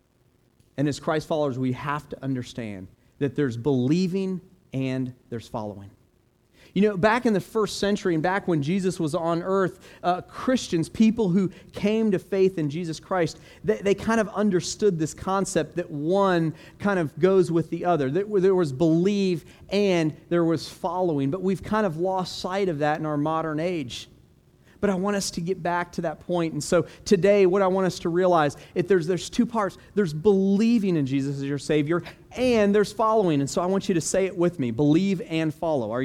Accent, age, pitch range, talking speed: American, 40-59, 140-190 Hz, 200 wpm